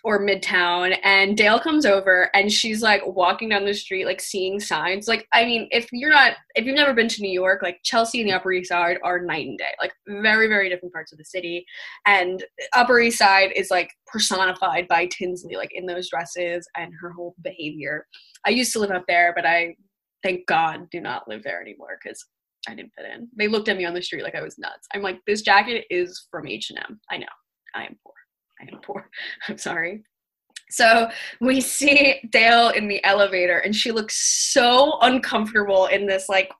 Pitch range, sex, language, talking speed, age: 185-225 Hz, female, English, 210 wpm, 10-29